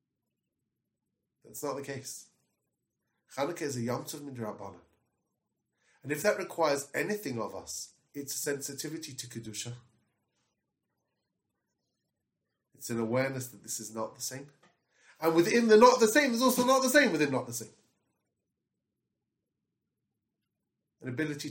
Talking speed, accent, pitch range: 130 wpm, British, 120-185 Hz